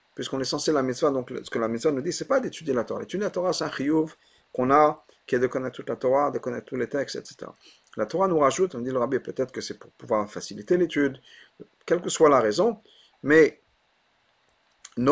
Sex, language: male, French